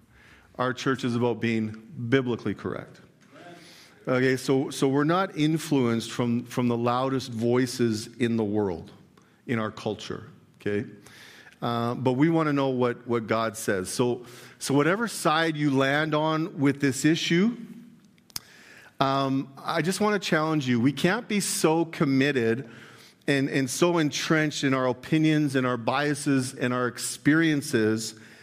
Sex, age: male, 40-59